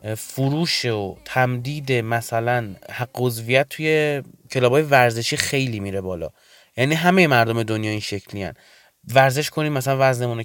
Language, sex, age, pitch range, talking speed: Persian, male, 30-49, 115-150 Hz, 125 wpm